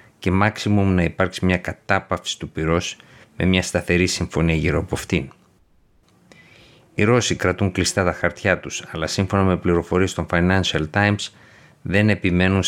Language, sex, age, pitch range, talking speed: Greek, male, 50-69, 80-100 Hz, 145 wpm